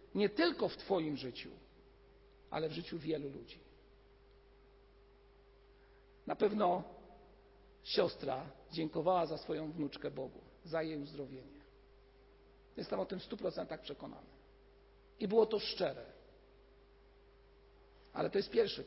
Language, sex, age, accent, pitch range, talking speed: Polish, male, 50-69, native, 165-240 Hz, 115 wpm